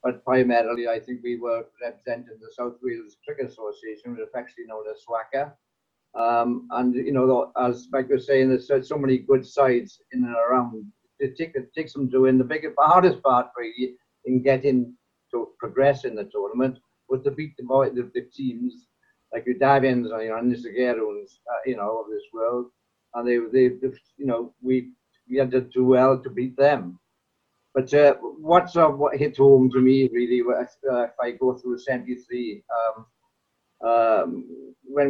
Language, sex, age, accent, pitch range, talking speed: English, male, 60-79, British, 120-145 Hz, 180 wpm